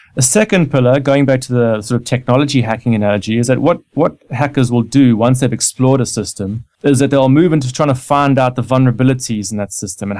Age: 30-49